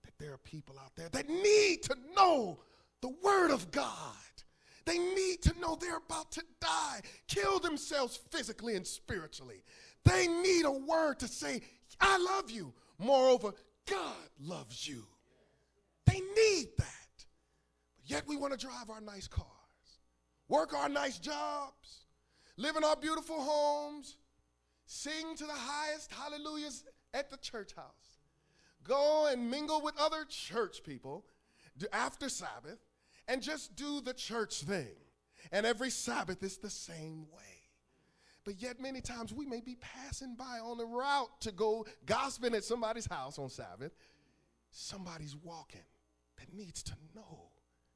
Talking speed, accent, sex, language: 145 wpm, American, male, English